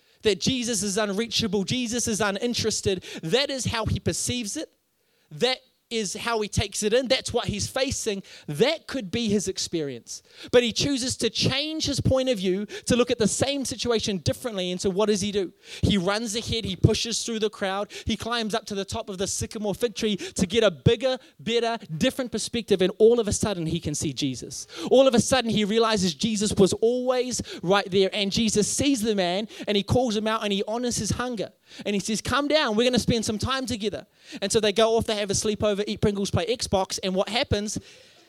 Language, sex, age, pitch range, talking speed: English, male, 20-39, 190-235 Hz, 220 wpm